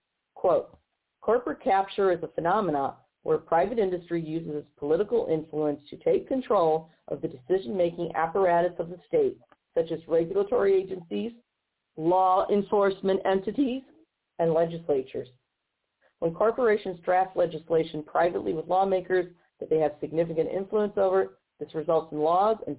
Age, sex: 50-69, female